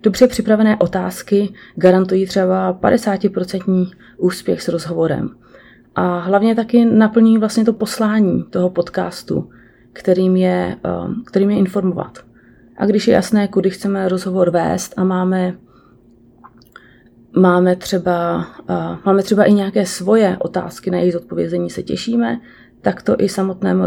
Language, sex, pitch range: Czech, female, 175-210 Hz